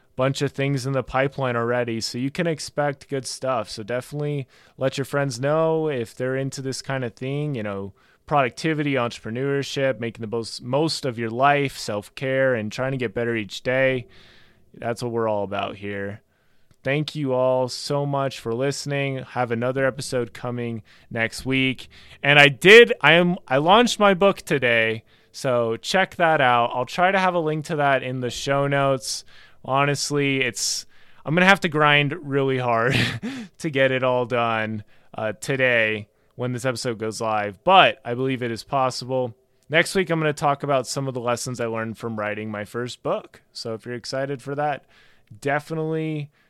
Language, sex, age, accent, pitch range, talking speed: English, male, 20-39, American, 115-145 Hz, 185 wpm